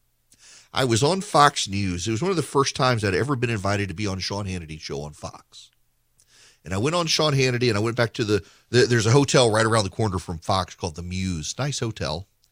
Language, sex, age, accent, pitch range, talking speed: English, male, 40-59, American, 100-140 Hz, 240 wpm